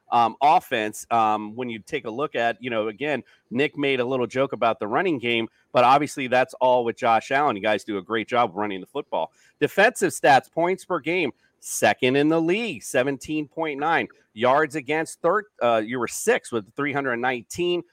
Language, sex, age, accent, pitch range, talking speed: English, male, 40-59, American, 120-165 Hz, 185 wpm